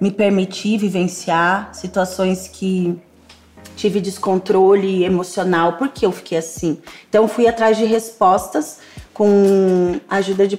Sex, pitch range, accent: female, 190-225 Hz, Brazilian